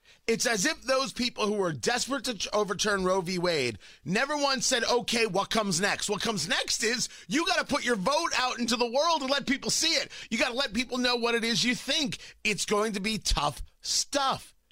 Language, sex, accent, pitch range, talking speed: English, male, American, 180-245 Hz, 230 wpm